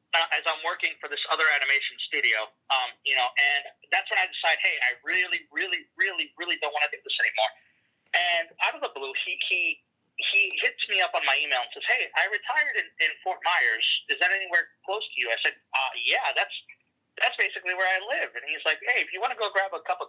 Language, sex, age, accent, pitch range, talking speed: English, male, 30-49, American, 145-200 Hz, 240 wpm